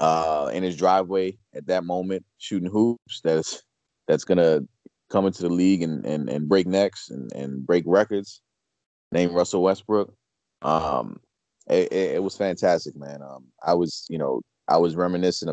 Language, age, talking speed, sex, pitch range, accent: English, 30-49, 170 wpm, male, 80-95 Hz, American